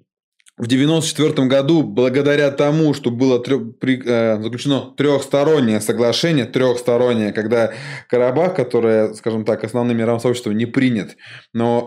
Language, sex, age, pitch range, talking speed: Russian, male, 20-39, 115-135 Hz, 110 wpm